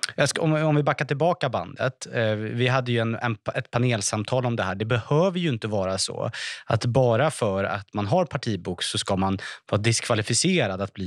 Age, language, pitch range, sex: 30-49, Swedish, 105-130 Hz, male